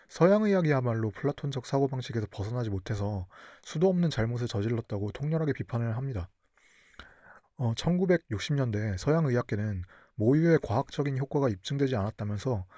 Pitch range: 110-145 Hz